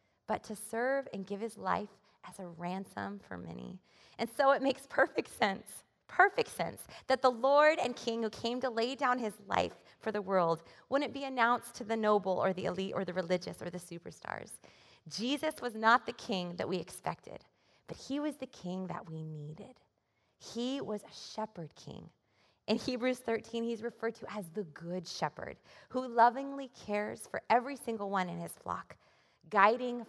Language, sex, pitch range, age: English, female, 185-240 Hz, 20-39